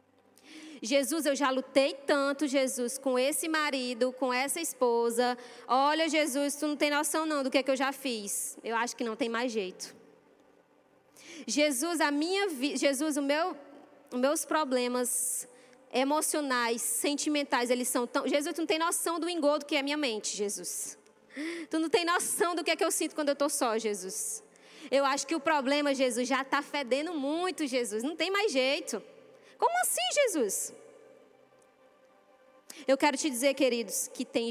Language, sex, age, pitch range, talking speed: Portuguese, female, 20-39, 250-305 Hz, 175 wpm